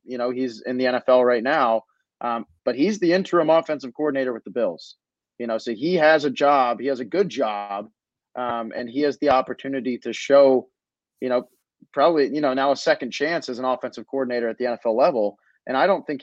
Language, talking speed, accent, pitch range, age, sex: English, 220 wpm, American, 120-145 Hz, 30-49, male